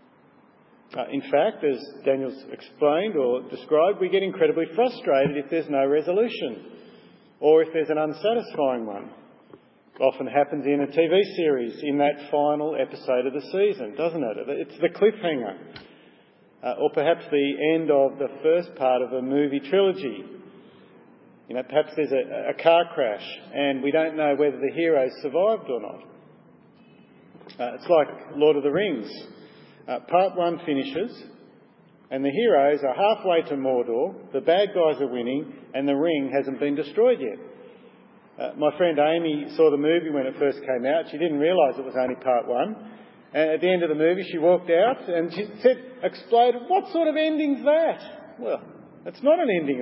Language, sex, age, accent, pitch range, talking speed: English, male, 50-69, Australian, 140-195 Hz, 175 wpm